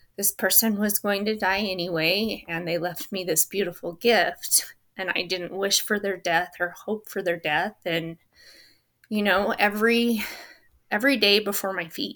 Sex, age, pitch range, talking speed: female, 30-49, 190-240 Hz, 175 wpm